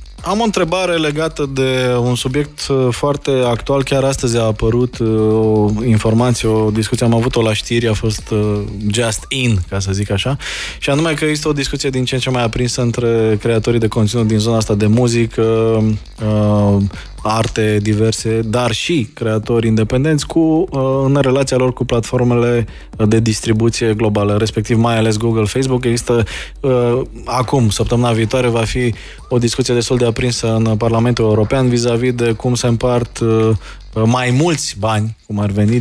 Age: 20-39